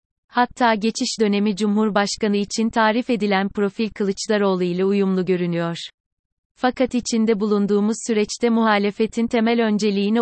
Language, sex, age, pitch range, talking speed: Turkish, female, 30-49, 195-225 Hz, 110 wpm